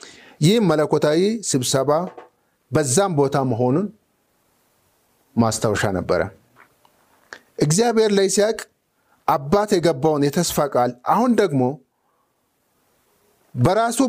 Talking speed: 70 wpm